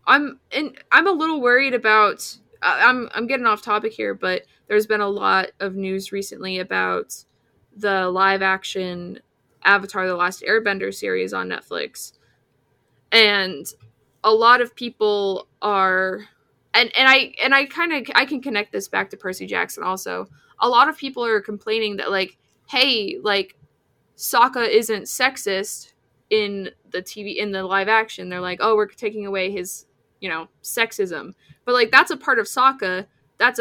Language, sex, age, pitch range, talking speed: English, female, 20-39, 195-250 Hz, 165 wpm